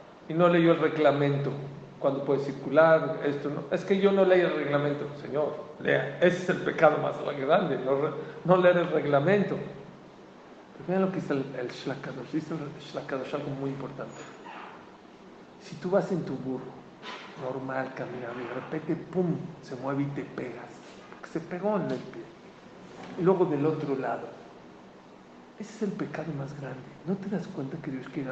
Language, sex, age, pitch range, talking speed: English, male, 50-69, 145-200 Hz, 180 wpm